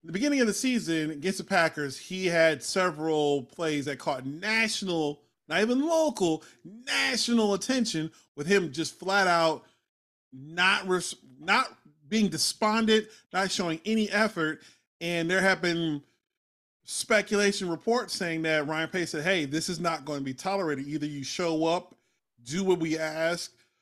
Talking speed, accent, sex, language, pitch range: 150 wpm, American, male, English, 155-205 Hz